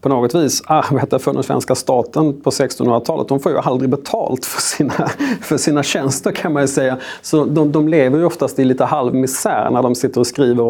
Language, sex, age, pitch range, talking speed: Swedish, male, 30-49, 120-145 Hz, 215 wpm